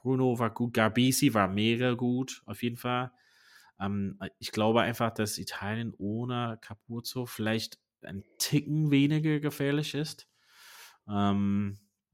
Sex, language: male, German